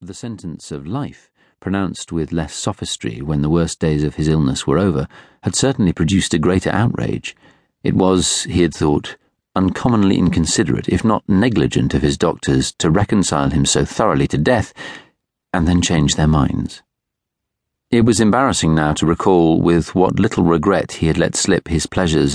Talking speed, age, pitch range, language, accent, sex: 170 wpm, 40-59, 75-100 Hz, English, British, male